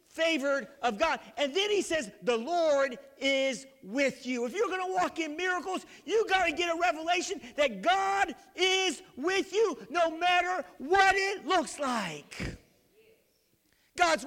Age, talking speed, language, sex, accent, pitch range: 50-69, 155 wpm, English, male, American, 265-365 Hz